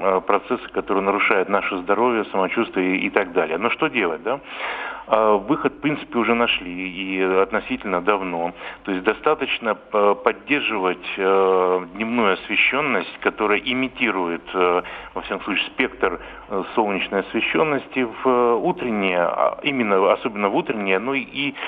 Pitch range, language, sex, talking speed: 95-120 Hz, Russian, male, 115 wpm